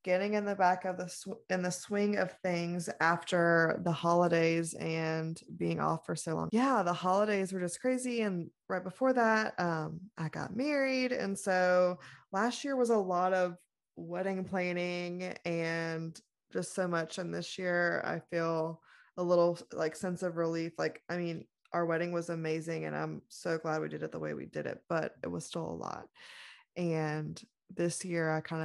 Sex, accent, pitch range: female, American, 160-185 Hz